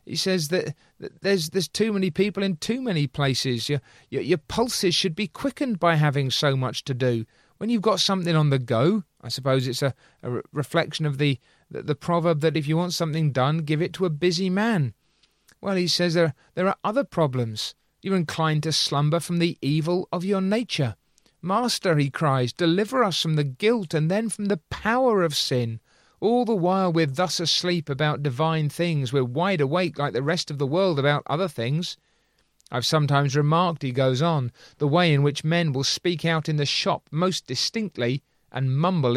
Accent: British